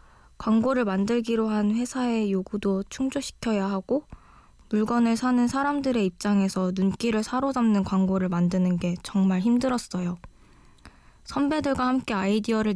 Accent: native